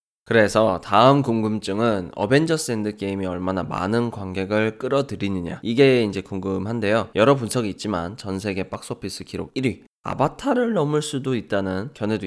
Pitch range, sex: 95-130 Hz, male